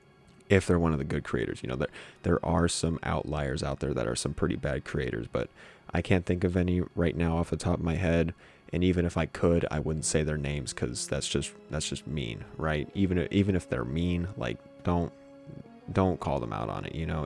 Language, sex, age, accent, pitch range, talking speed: English, male, 30-49, American, 80-90 Hz, 235 wpm